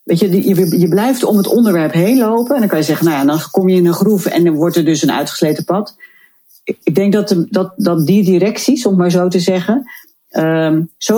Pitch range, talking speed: 155-190 Hz, 230 wpm